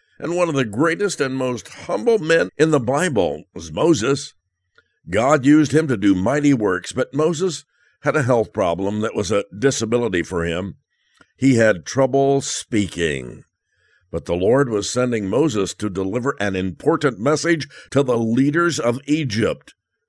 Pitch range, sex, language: 100-145 Hz, male, English